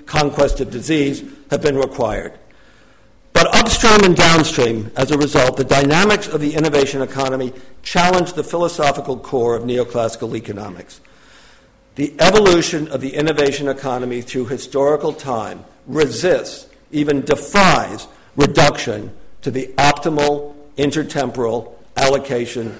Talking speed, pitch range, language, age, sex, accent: 115 wpm, 130-155 Hz, English, 60-79, male, American